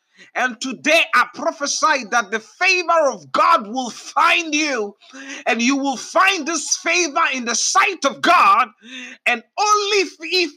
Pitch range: 260-365 Hz